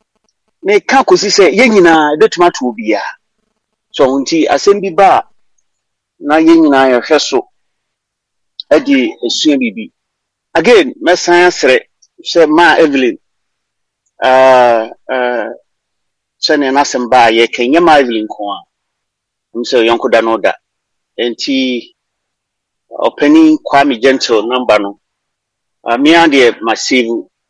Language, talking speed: English, 110 wpm